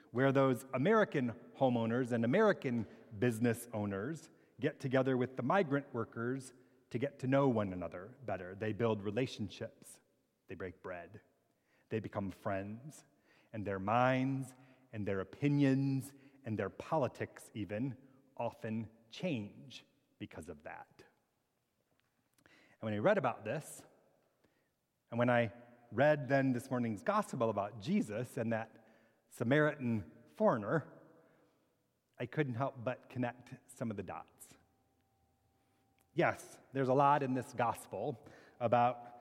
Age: 30-49